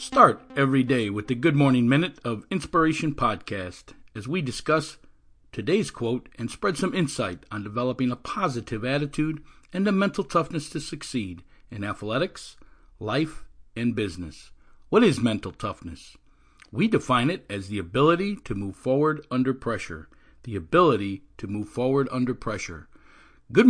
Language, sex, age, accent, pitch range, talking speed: English, male, 50-69, American, 100-150 Hz, 150 wpm